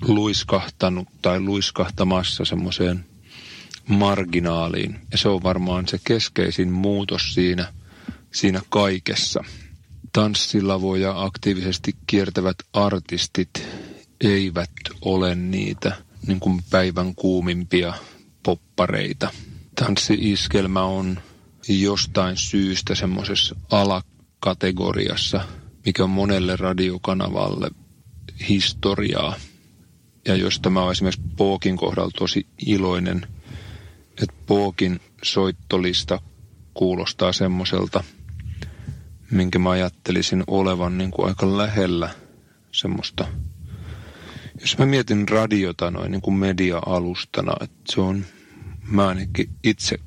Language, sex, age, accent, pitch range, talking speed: Finnish, male, 30-49, native, 90-100 Hz, 85 wpm